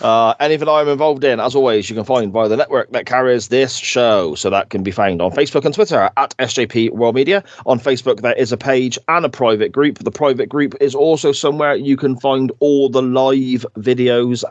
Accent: British